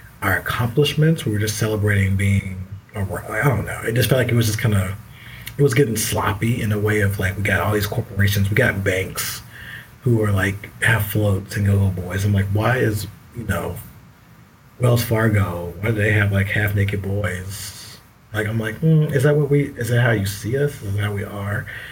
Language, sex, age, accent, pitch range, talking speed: English, male, 30-49, American, 105-120 Hz, 215 wpm